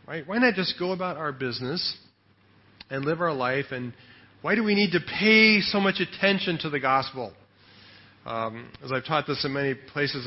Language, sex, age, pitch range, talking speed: English, male, 40-59, 115-160 Hz, 185 wpm